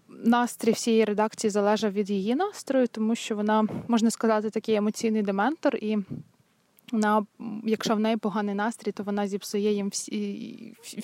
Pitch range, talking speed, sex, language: 200-225 Hz, 145 wpm, female, Ukrainian